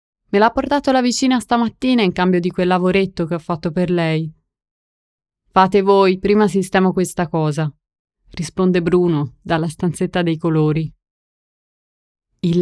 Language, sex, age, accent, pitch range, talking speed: Italian, female, 20-39, native, 165-210 Hz, 140 wpm